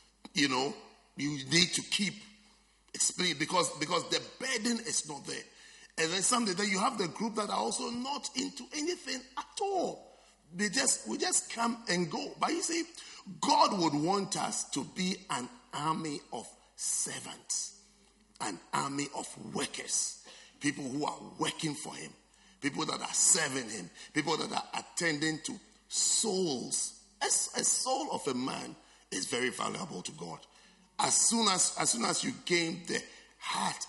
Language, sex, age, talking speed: English, male, 50-69, 160 wpm